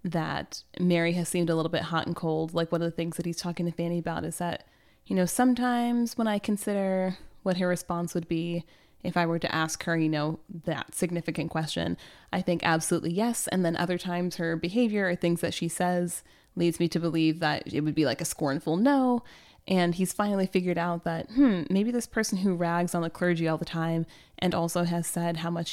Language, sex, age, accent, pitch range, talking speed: English, female, 20-39, American, 170-205 Hz, 225 wpm